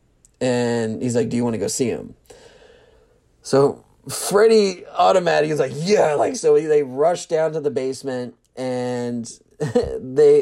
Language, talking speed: English, 155 wpm